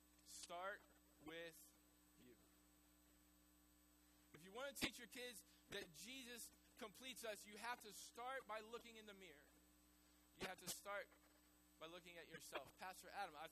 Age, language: 20-39, English